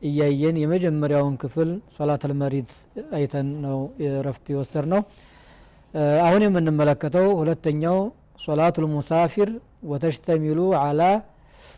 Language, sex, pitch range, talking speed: Amharic, male, 145-170 Hz, 85 wpm